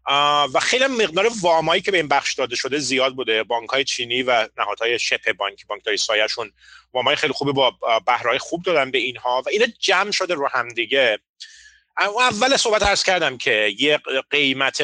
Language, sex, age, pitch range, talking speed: Persian, male, 30-49, 135-190 Hz, 180 wpm